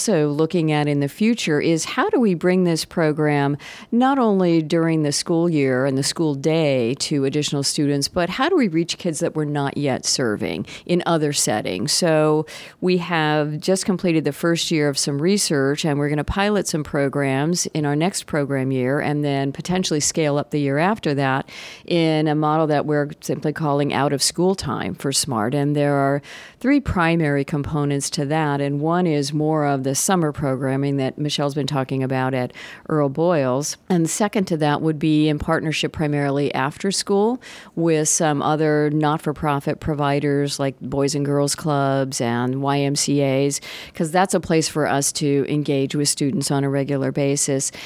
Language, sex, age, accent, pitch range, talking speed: English, female, 50-69, American, 140-165 Hz, 185 wpm